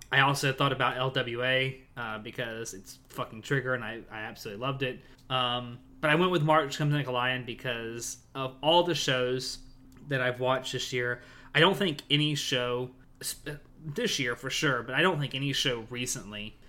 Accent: American